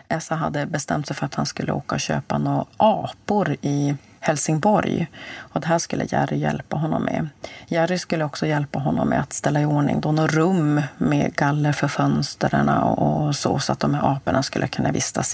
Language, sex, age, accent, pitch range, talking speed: Swedish, female, 30-49, native, 130-165 Hz, 195 wpm